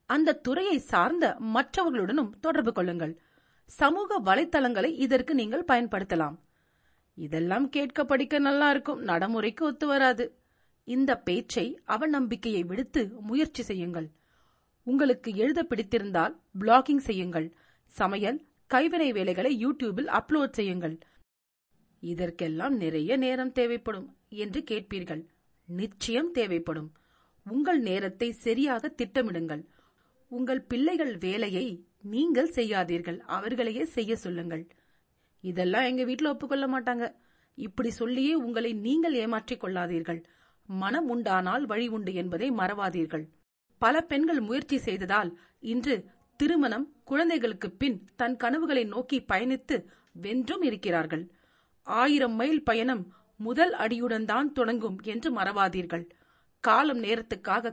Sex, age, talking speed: female, 40-59, 90 wpm